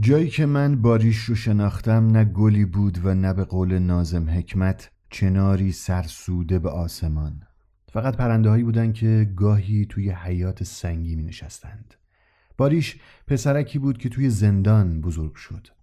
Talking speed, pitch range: 135 wpm, 95-120 Hz